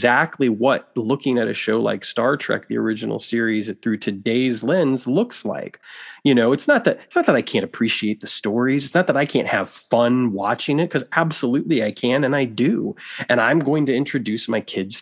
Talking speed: 210 wpm